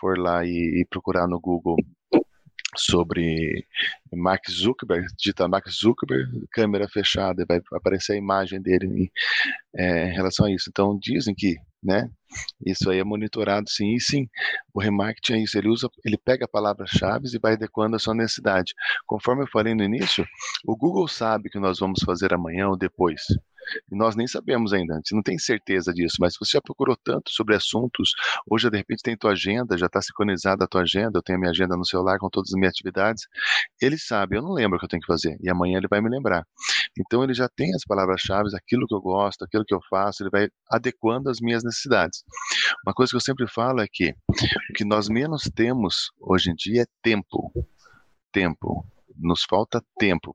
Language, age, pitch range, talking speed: Portuguese, 20-39, 90-110 Hz, 205 wpm